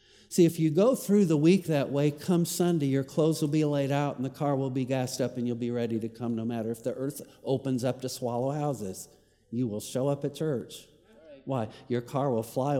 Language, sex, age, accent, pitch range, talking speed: English, male, 50-69, American, 120-180 Hz, 240 wpm